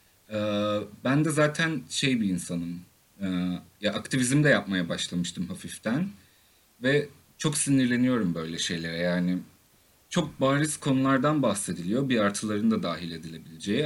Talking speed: 115 wpm